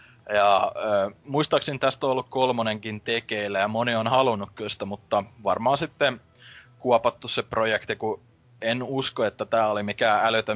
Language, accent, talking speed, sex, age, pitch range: Finnish, native, 160 wpm, male, 20-39, 105-125 Hz